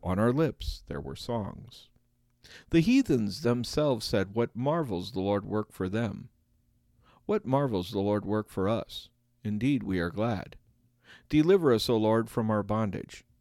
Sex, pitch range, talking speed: male, 100-130 Hz, 155 wpm